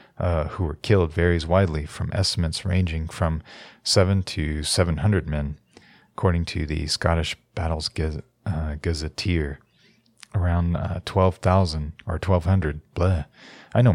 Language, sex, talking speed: English, male, 130 wpm